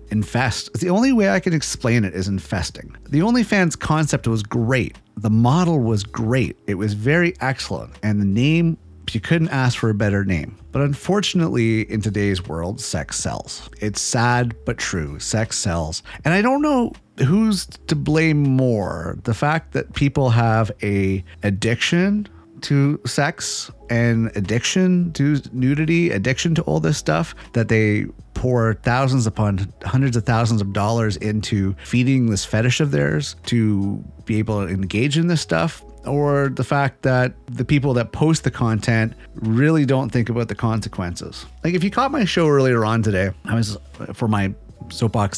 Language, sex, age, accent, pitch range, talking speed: English, male, 30-49, American, 105-140 Hz, 165 wpm